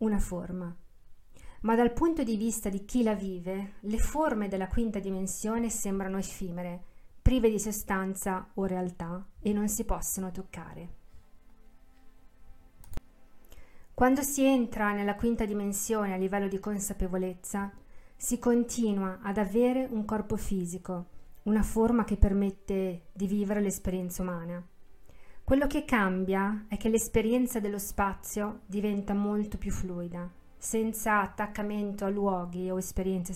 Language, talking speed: Italian, 130 wpm